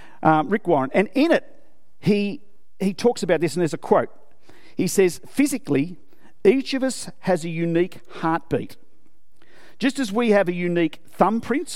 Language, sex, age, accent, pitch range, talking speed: English, male, 50-69, Australian, 160-215 Hz, 165 wpm